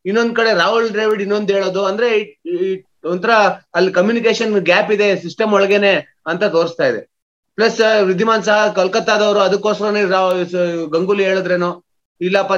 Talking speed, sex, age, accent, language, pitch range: 120 wpm, male, 30-49, native, Kannada, 180-225 Hz